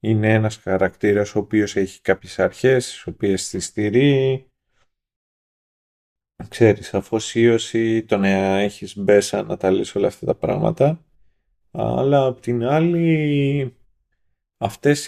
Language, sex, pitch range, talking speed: Greek, male, 95-130 Hz, 110 wpm